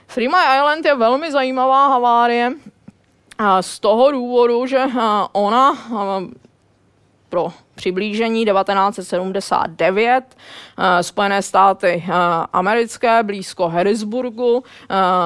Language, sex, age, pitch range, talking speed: Czech, female, 20-39, 200-260 Hz, 80 wpm